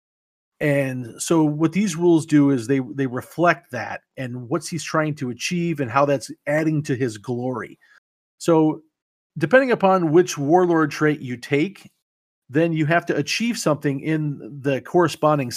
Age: 40-59